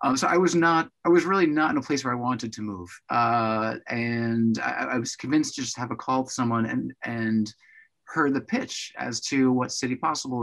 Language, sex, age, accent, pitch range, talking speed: English, male, 30-49, American, 110-145 Hz, 230 wpm